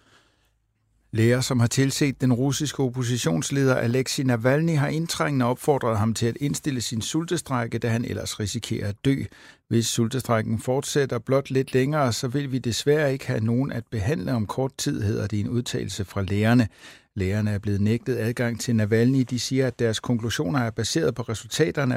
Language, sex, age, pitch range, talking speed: Danish, male, 60-79, 105-130 Hz, 175 wpm